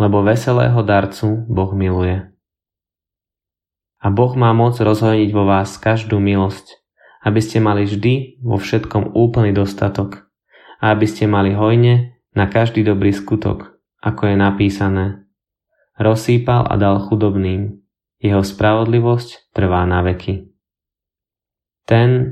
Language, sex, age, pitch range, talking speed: Slovak, male, 20-39, 95-110 Hz, 120 wpm